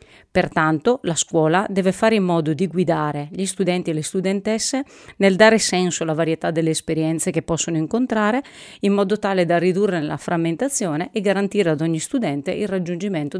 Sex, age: female, 40-59